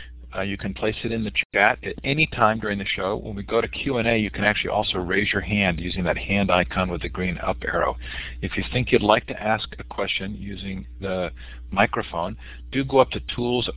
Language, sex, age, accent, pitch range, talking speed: English, male, 50-69, American, 80-110 Hz, 225 wpm